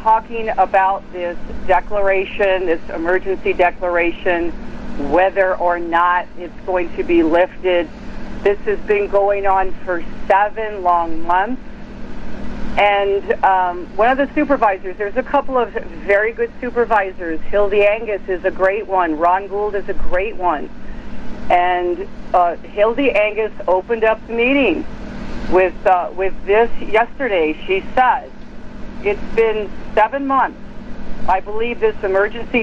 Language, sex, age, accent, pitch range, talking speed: English, female, 50-69, American, 185-225 Hz, 130 wpm